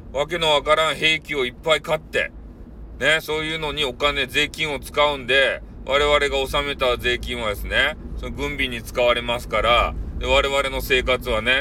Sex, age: male, 40-59